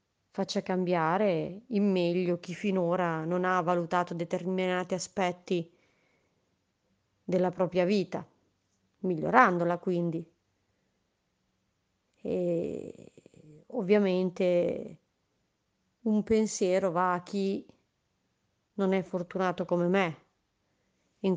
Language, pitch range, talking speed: English, 170-195 Hz, 80 wpm